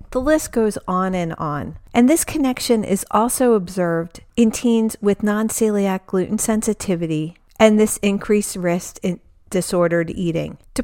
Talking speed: 145 wpm